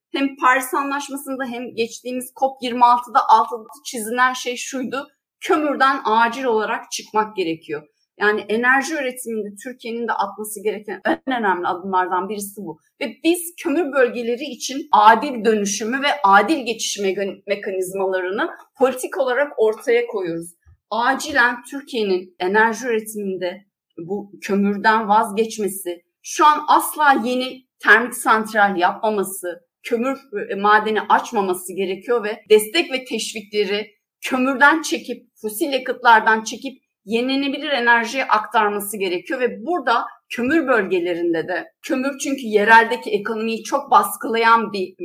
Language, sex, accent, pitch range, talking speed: Turkish, female, native, 200-265 Hz, 115 wpm